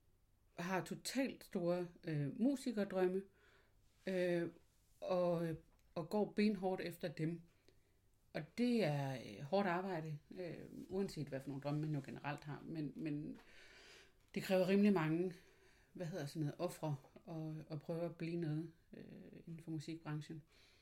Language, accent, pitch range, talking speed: Danish, native, 145-180 Hz, 145 wpm